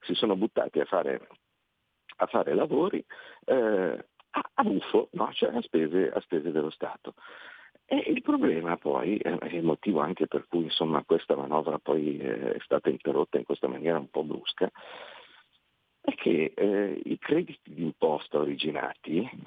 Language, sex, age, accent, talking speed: Italian, male, 50-69, native, 165 wpm